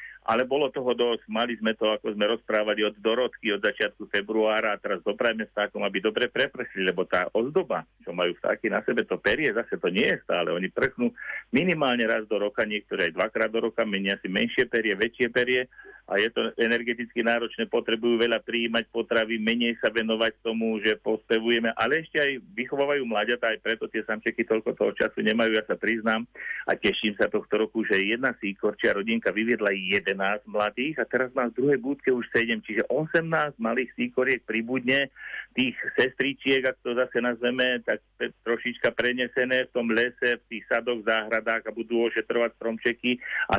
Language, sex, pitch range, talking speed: Slovak, male, 110-120 Hz, 180 wpm